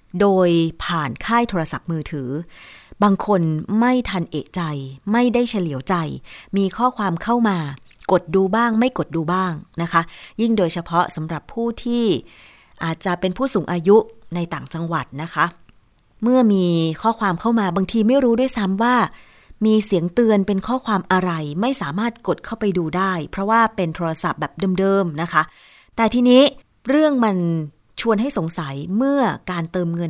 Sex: female